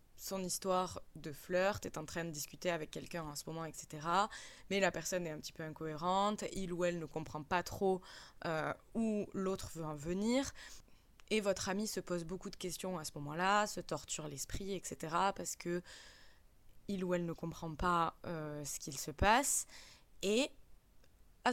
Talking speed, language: 180 wpm, French